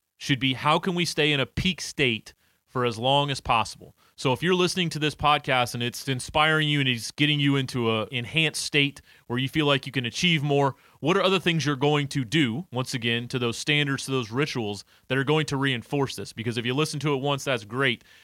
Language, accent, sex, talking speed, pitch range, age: English, American, male, 240 wpm, 115-150 Hz, 30-49